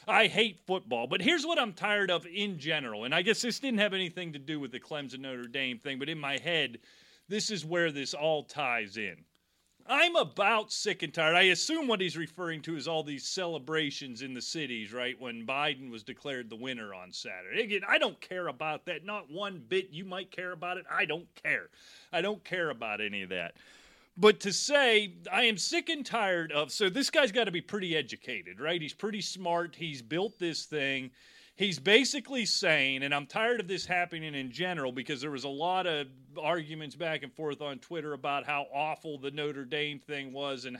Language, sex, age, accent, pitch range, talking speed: English, male, 30-49, American, 135-185 Hz, 210 wpm